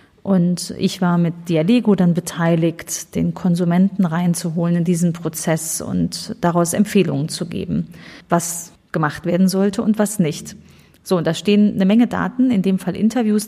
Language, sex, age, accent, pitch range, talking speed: German, female, 30-49, German, 175-195 Hz, 160 wpm